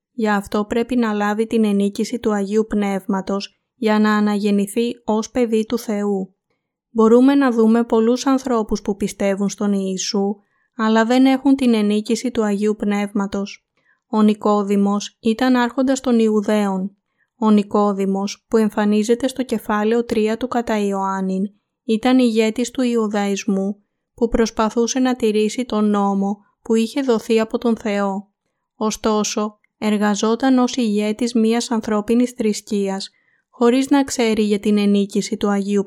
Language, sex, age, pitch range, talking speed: Greek, female, 20-39, 200-235 Hz, 135 wpm